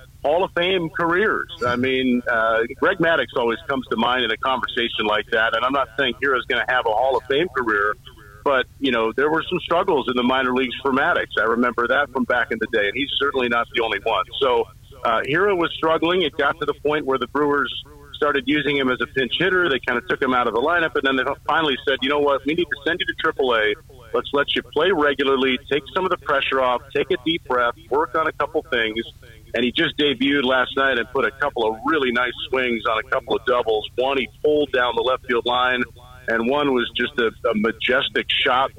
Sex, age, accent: male, 40-59, American